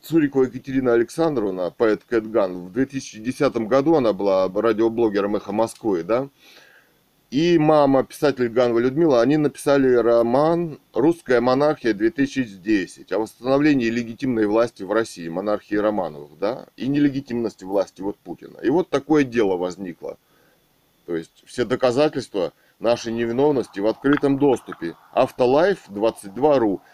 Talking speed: 120 wpm